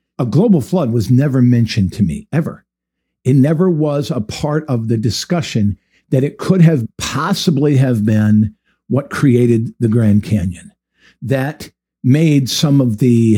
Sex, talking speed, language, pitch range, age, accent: male, 150 wpm, English, 110-155 Hz, 50-69, American